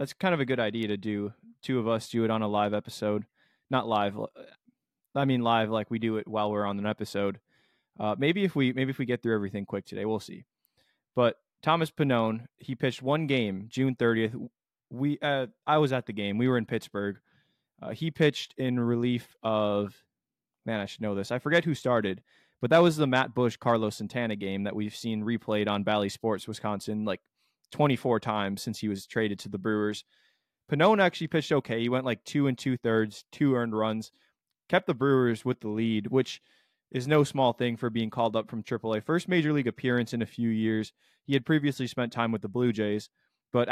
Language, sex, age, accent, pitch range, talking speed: English, male, 20-39, American, 110-130 Hz, 215 wpm